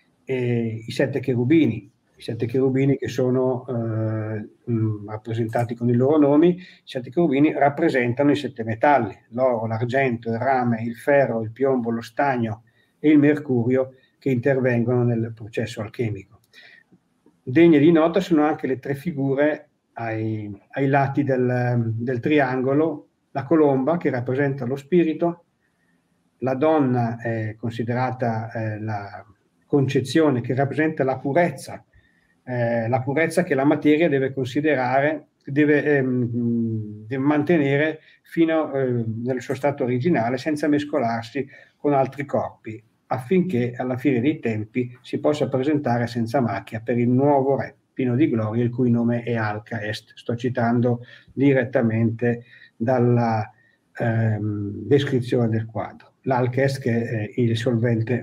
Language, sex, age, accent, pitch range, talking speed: Italian, male, 50-69, native, 115-140 Hz, 130 wpm